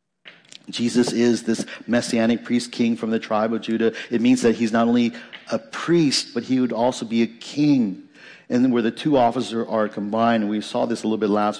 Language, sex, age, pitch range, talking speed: English, male, 50-69, 110-135 Hz, 210 wpm